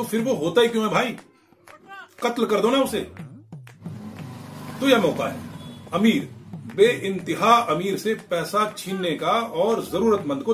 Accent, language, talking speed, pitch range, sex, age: native, Hindi, 155 wpm, 175-245 Hz, male, 40-59